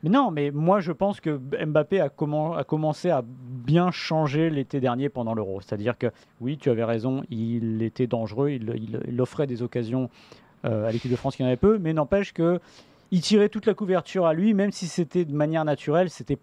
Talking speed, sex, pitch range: 215 wpm, male, 135-185 Hz